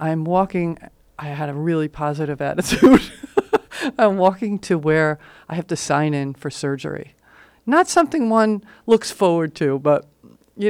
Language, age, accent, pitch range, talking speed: English, 50-69, American, 155-195 Hz, 150 wpm